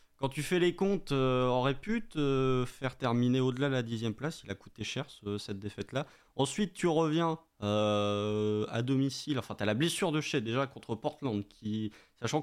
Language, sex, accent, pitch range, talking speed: French, male, French, 105-145 Hz, 210 wpm